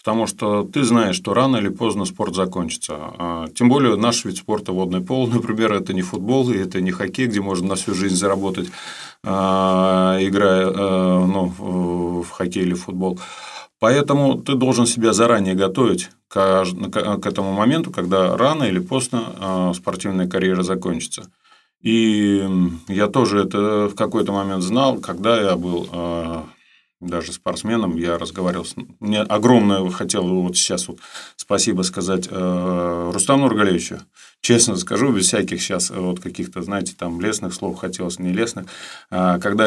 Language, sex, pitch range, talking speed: Russian, male, 90-115 Hz, 140 wpm